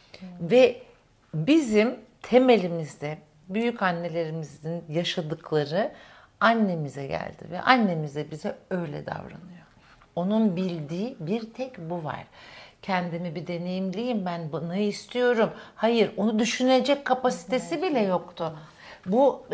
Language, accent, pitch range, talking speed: Turkish, native, 175-230 Hz, 95 wpm